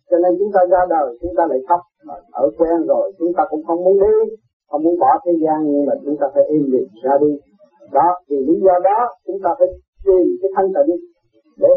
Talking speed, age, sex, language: 235 wpm, 50-69, male, Vietnamese